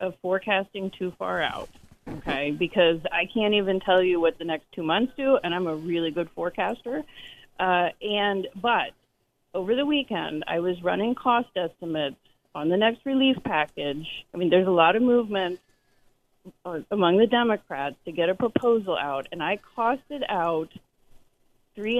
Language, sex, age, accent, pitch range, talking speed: English, female, 30-49, American, 170-225 Hz, 165 wpm